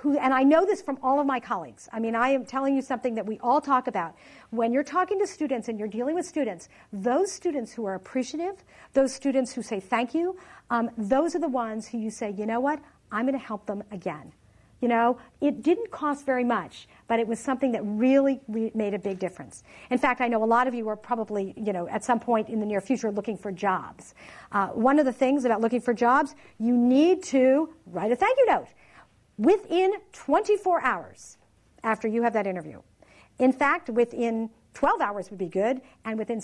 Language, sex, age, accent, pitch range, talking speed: English, female, 50-69, American, 210-280 Hz, 220 wpm